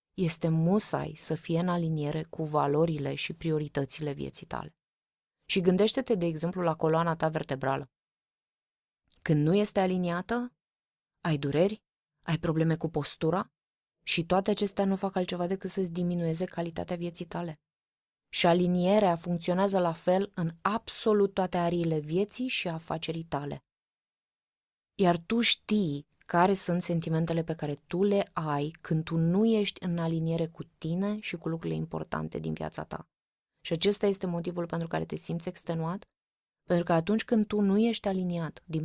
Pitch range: 165-195 Hz